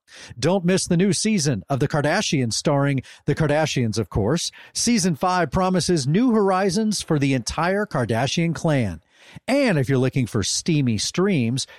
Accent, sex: American, male